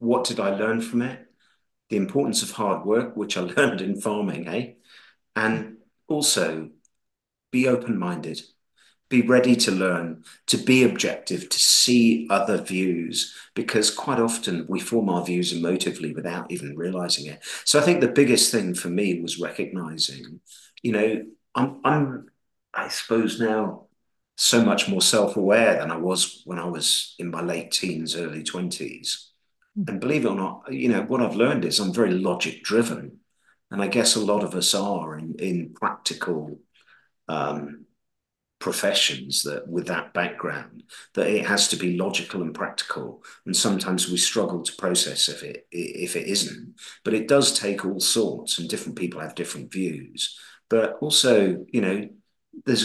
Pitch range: 85-115 Hz